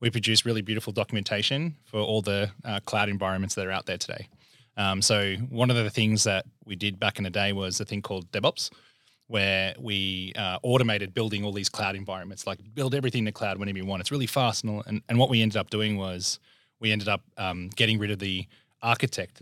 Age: 20-39